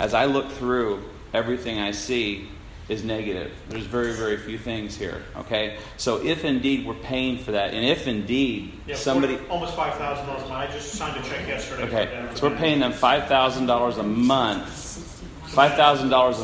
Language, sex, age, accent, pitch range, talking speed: English, male, 40-59, American, 110-135 Hz, 165 wpm